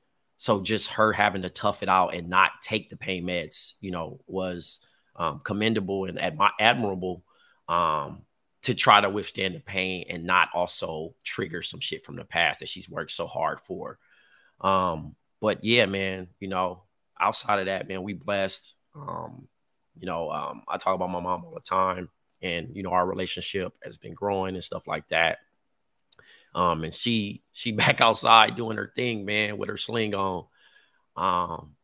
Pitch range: 90-100 Hz